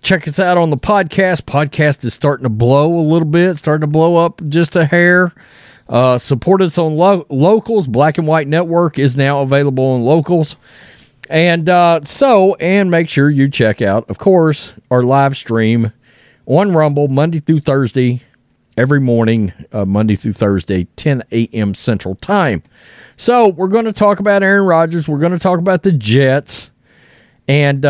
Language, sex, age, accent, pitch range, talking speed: English, male, 40-59, American, 130-175 Hz, 170 wpm